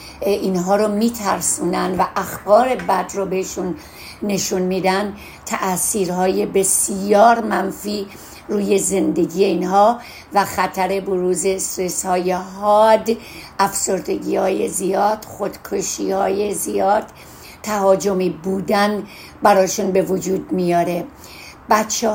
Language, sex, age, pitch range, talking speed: Persian, female, 60-79, 190-210 Hz, 95 wpm